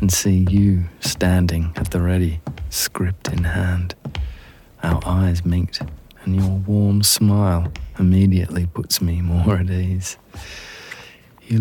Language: English